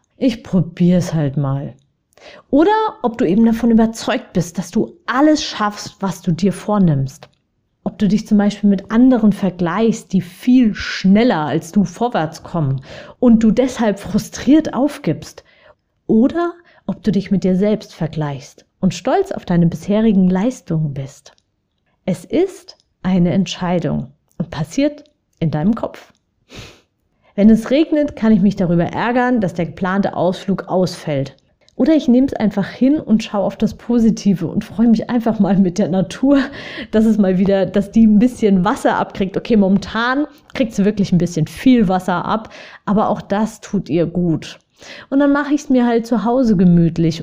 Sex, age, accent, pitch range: female, 30-49, German, 175-240 Hz